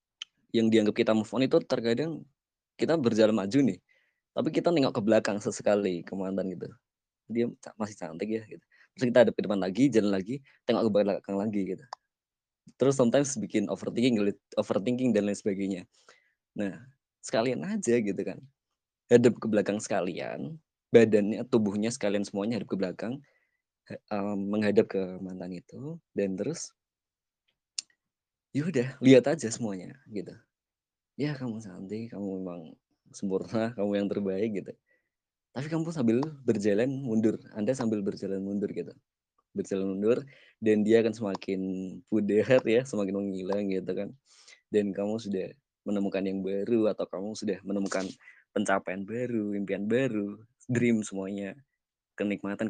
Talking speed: 140 wpm